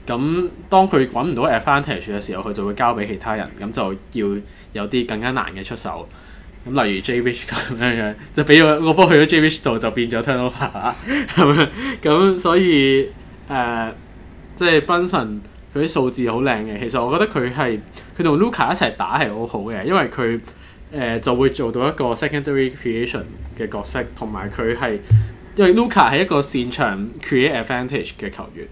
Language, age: Chinese, 20-39